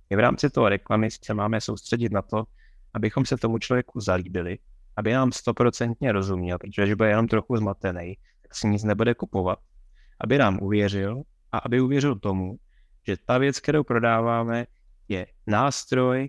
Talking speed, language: 160 wpm, Czech